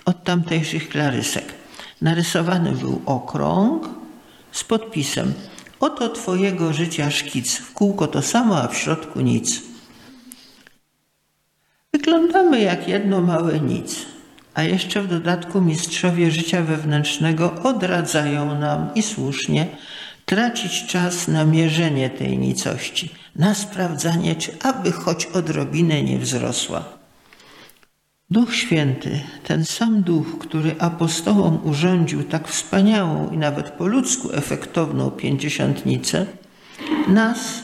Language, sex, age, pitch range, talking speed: Polish, male, 50-69, 150-200 Hz, 105 wpm